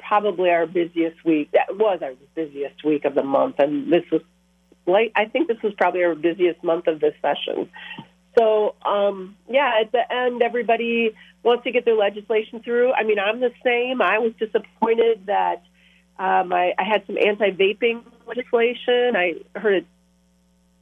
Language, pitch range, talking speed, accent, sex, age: English, 170-210 Hz, 165 wpm, American, female, 40-59